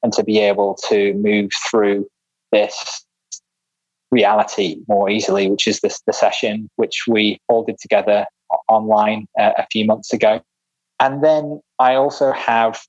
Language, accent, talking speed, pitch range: English, British, 150 wpm, 110-125 Hz